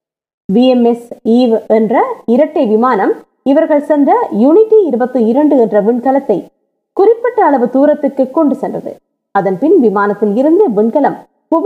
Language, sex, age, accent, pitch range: Tamil, female, 20-39, native, 225-315 Hz